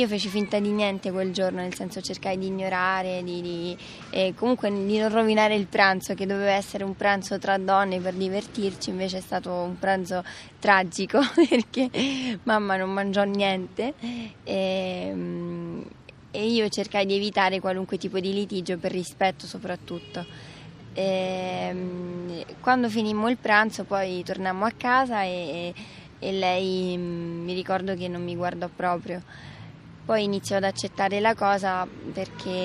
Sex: female